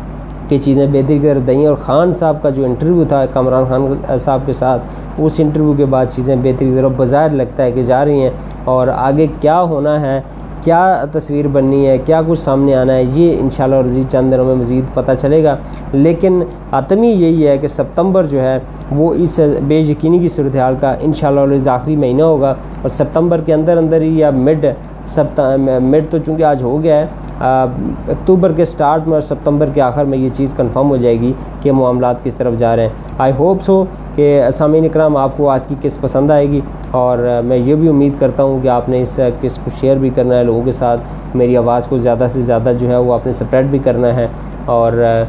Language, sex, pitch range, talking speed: Urdu, male, 130-155 Hz, 225 wpm